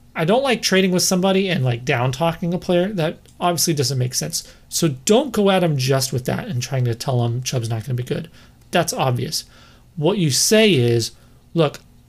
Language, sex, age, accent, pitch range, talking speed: English, male, 30-49, American, 125-170 Hz, 215 wpm